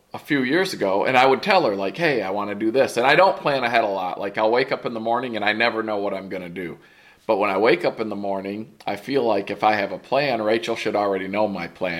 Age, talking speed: 40-59, 300 wpm